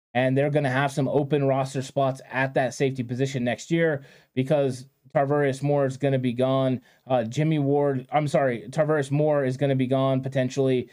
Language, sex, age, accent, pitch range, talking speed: English, male, 20-39, American, 125-140 Hz, 200 wpm